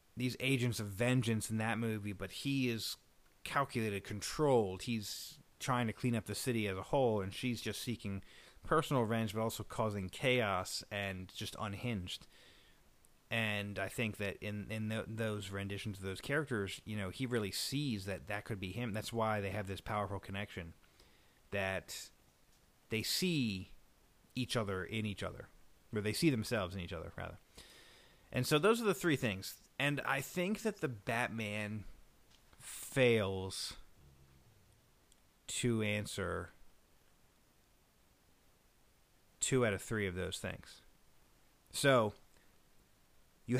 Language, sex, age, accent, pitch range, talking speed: English, male, 30-49, American, 95-120 Hz, 145 wpm